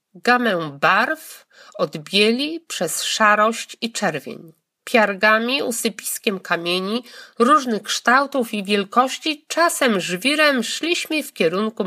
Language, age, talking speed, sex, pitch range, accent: Polish, 50-69, 95 wpm, female, 185-260 Hz, native